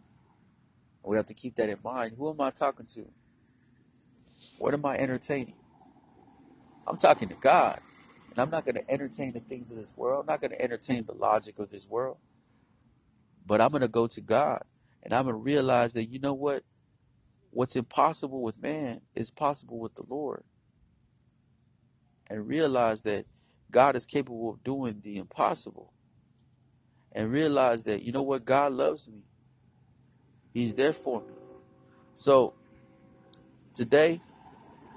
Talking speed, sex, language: 155 wpm, male, English